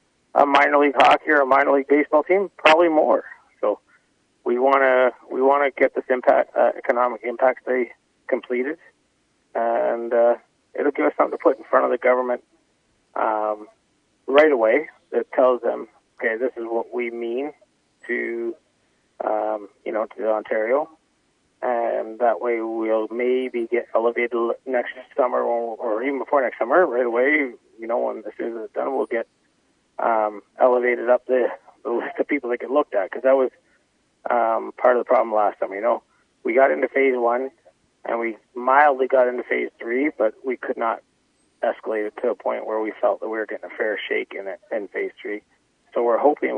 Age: 30-49